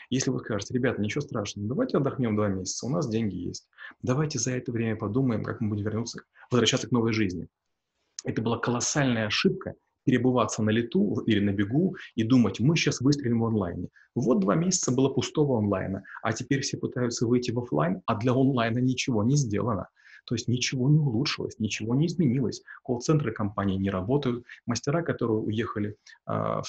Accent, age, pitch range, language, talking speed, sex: native, 30-49, 105-140 Hz, Russian, 180 wpm, male